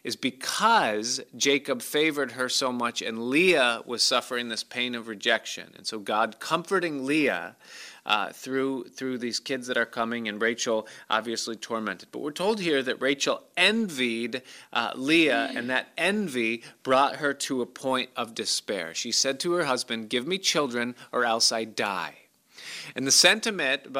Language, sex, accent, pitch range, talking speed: English, male, American, 120-150 Hz, 165 wpm